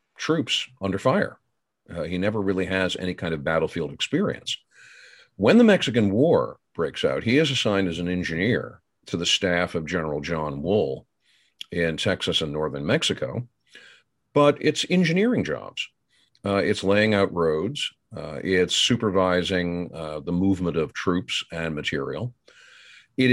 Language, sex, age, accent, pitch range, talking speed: English, male, 50-69, American, 85-125 Hz, 145 wpm